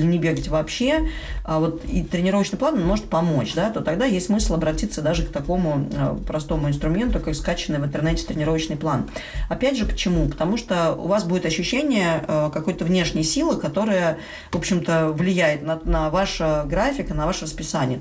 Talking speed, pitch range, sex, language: 165 wpm, 155-190 Hz, female, Russian